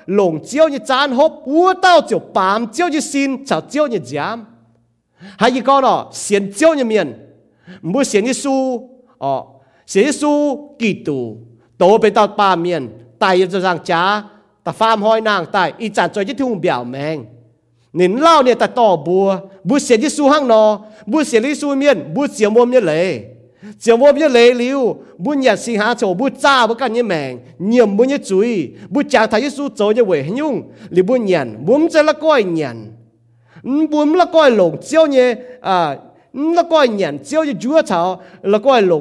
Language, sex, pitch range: English, male, 170-275 Hz